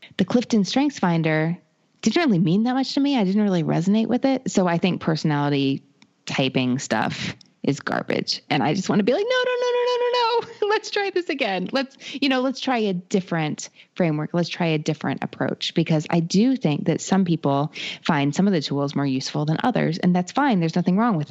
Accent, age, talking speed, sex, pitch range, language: American, 20-39, 220 wpm, female, 140-200 Hz, English